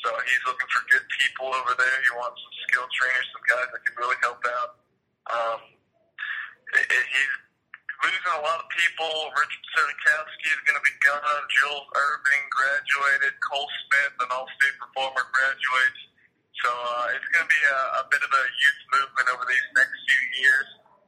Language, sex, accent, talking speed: English, male, American, 175 wpm